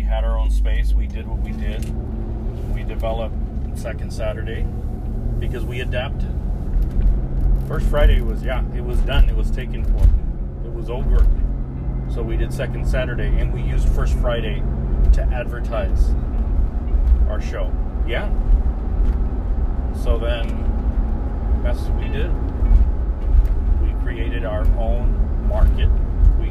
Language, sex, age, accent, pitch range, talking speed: English, male, 40-59, American, 65-70 Hz, 120 wpm